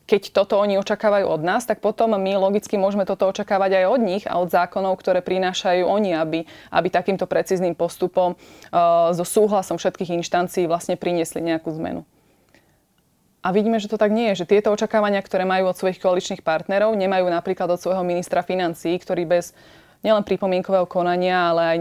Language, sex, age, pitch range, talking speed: Slovak, female, 20-39, 170-195 Hz, 180 wpm